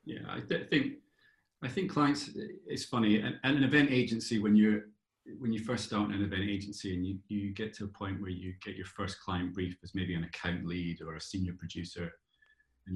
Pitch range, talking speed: 90-110 Hz, 210 wpm